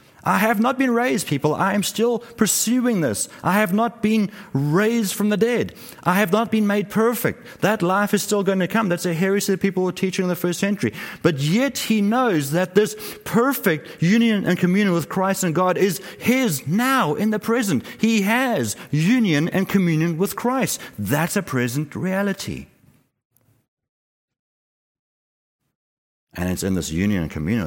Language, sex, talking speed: English, male, 175 wpm